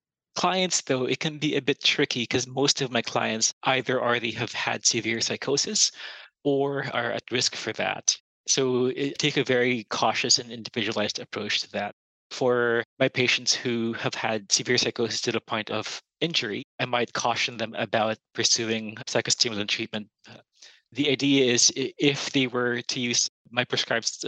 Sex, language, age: male, English, 20-39